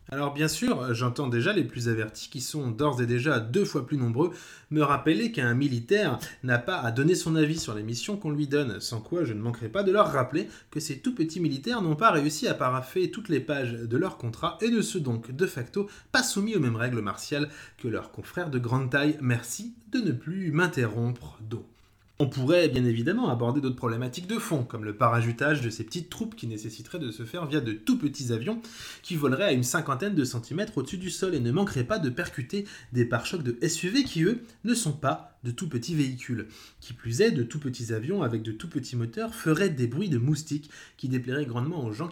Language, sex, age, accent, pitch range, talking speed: French, male, 20-39, French, 120-175 Hz, 225 wpm